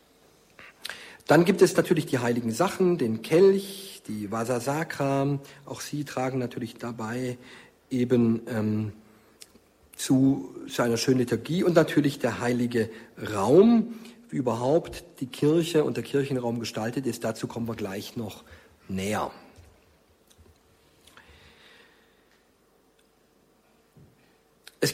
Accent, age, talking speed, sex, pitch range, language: German, 50-69, 105 wpm, male, 115-175 Hz, German